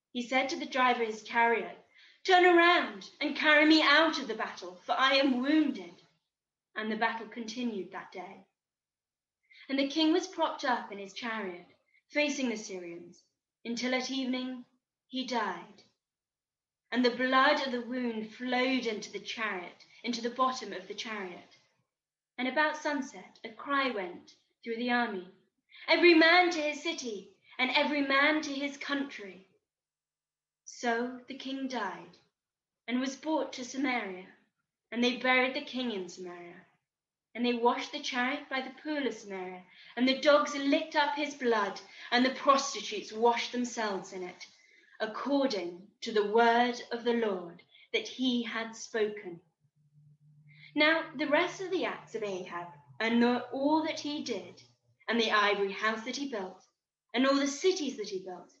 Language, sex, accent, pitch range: English, female, British, 210-280 Hz